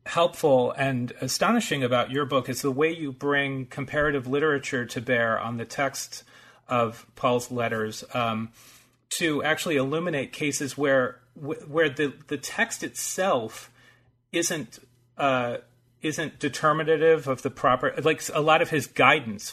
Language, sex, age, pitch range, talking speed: English, male, 30-49, 120-145 Hz, 140 wpm